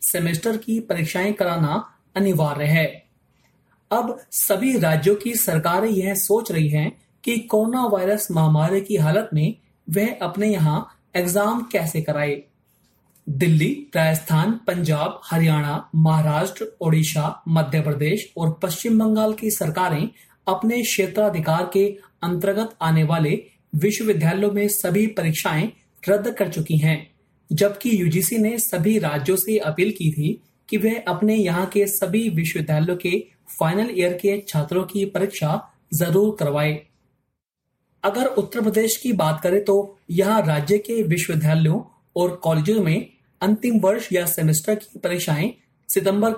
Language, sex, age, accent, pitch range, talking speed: Hindi, male, 30-49, native, 160-210 Hz, 130 wpm